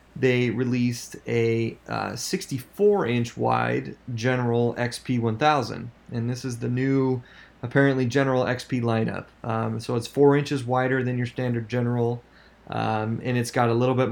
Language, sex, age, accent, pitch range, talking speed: English, male, 20-39, American, 115-130 Hz, 150 wpm